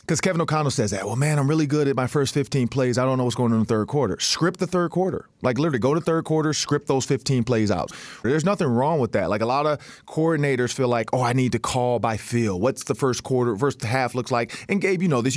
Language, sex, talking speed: English, male, 280 wpm